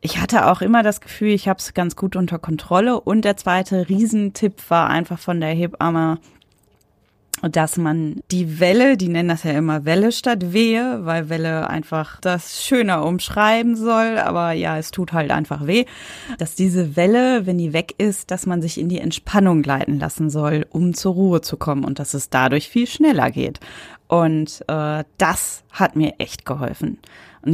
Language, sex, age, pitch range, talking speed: German, female, 20-39, 160-215 Hz, 185 wpm